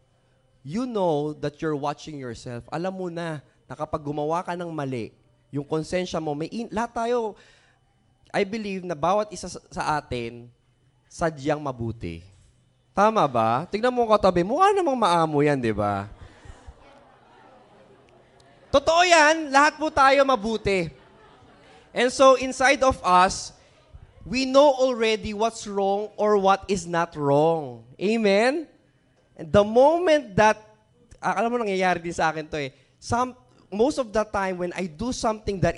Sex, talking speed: male, 145 wpm